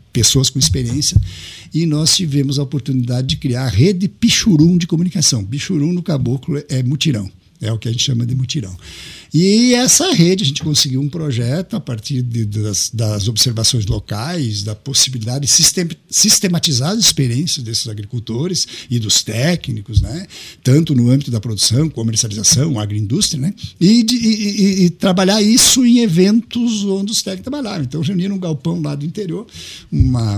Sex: male